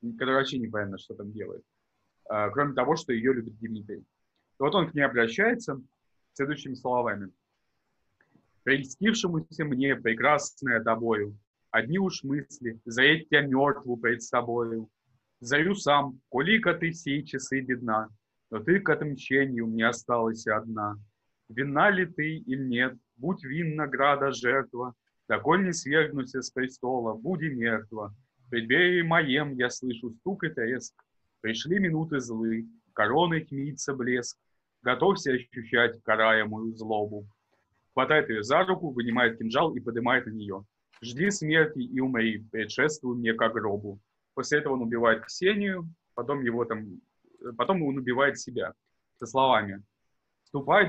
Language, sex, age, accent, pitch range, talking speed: Russian, male, 20-39, native, 115-145 Hz, 135 wpm